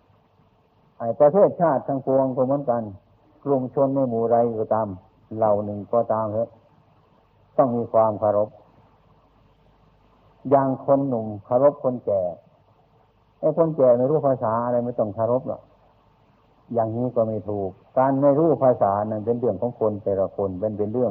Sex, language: male, Thai